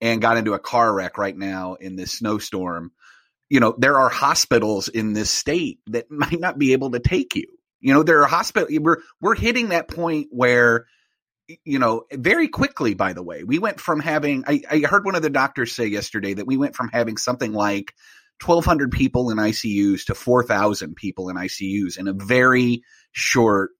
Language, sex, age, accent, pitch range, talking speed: English, male, 30-49, American, 110-150 Hz, 195 wpm